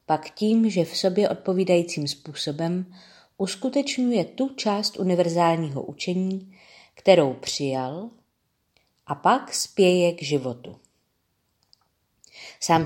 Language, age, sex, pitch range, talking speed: Czech, 40-59, female, 150-190 Hz, 95 wpm